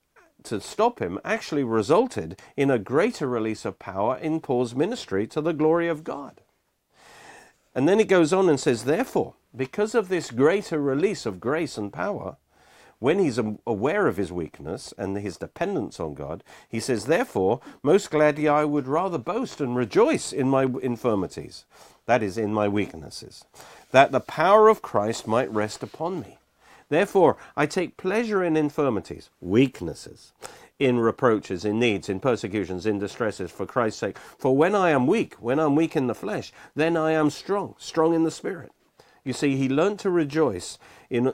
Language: English